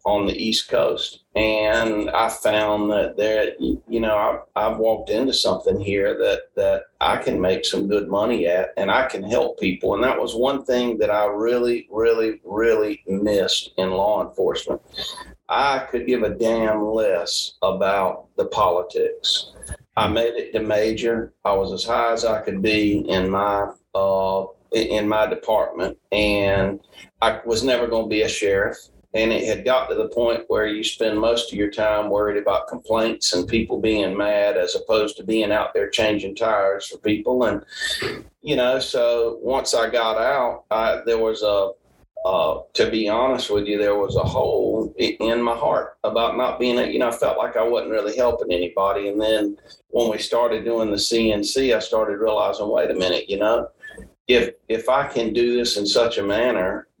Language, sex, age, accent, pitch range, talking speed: English, male, 40-59, American, 105-120 Hz, 185 wpm